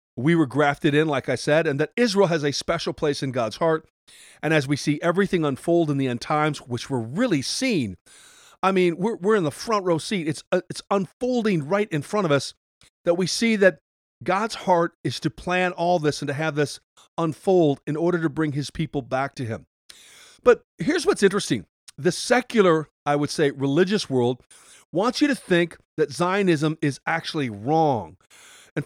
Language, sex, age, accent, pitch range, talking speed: English, male, 40-59, American, 145-195 Hz, 200 wpm